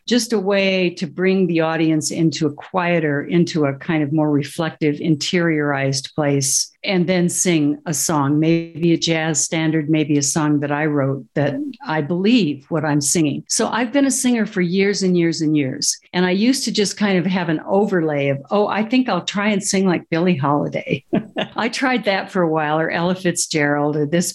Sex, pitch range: female, 155-205 Hz